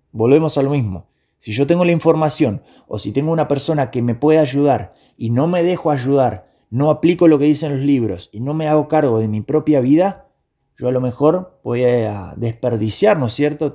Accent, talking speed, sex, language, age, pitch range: Argentinian, 215 wpm, male, Spanish, 20-39, 125-155 Hz